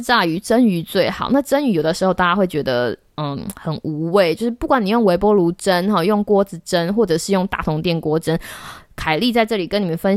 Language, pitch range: Chinese, 180-260 Hz